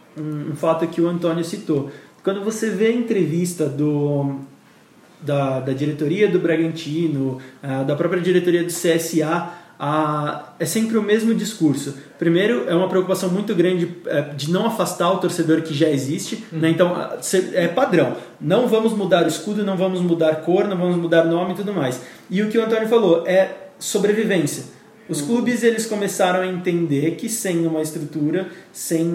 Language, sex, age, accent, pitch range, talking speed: Portuguese, male, 20-39, Brazilian, 160-200 Hz, 165 wpm